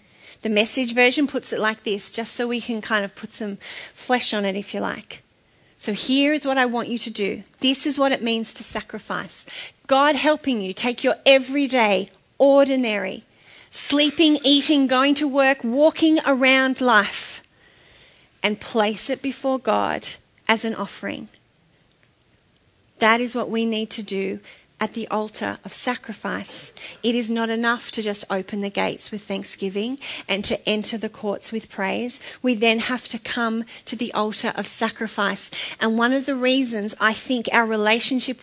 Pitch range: 215-260 Hz